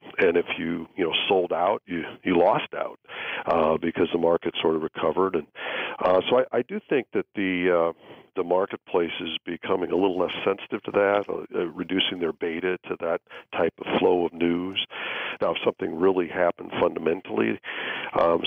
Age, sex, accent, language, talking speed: 50-69, male, American, English, 180 wpm